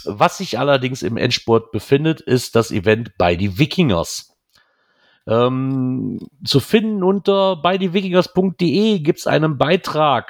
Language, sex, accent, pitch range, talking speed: German, male, German, 110-170 Hz, 120 wpm